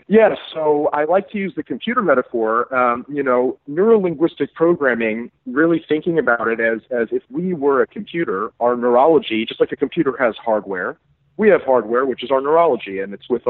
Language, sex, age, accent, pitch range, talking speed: English, male, 40-59, American, 115-145 Hz, 190 wpm